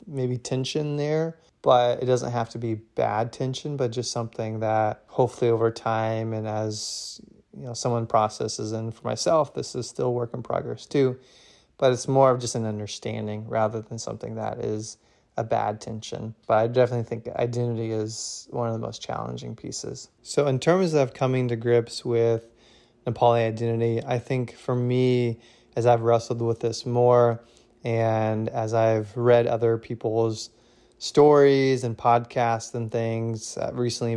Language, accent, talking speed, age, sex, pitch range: English, American, 165 wpm, 20-39, male, 115-125 Hz